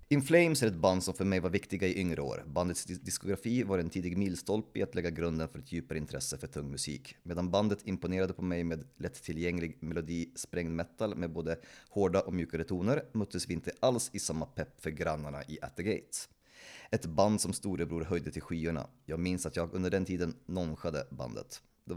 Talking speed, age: 200 wpm, 30-49